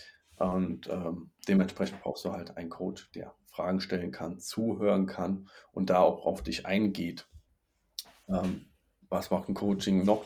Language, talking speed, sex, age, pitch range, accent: German, 150 wpm, male, 40-59, 90-115 Hz, German